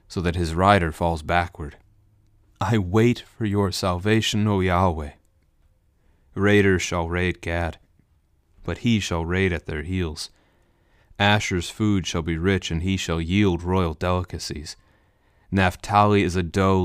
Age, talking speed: 30-49, 140 wpm